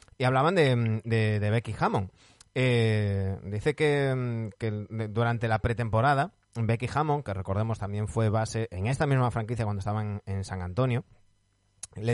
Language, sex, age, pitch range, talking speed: Spanish, male, 30-49, 110-145 Hz, 150 wpm